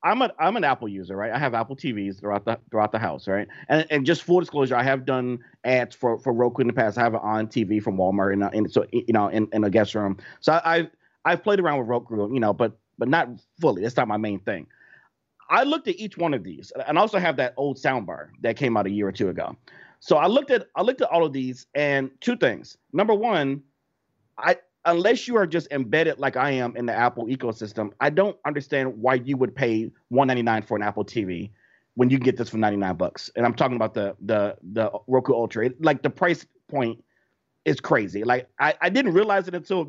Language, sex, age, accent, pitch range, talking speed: English, male, 30-49, American, 115-170 Hz, 240 wpm